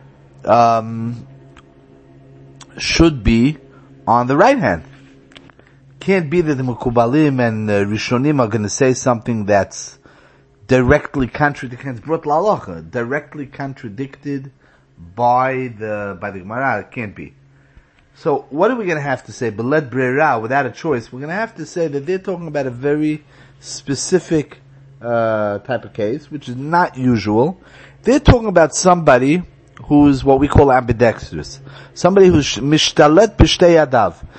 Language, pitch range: English, 115-150 Hz